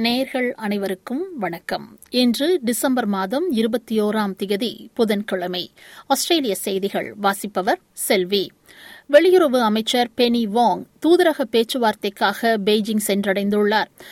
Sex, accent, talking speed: female, native, 90 wpm